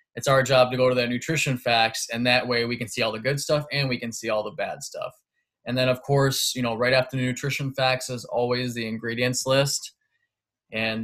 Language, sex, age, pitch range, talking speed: English, male, 20-39, 120-135 Hz, 240 wpm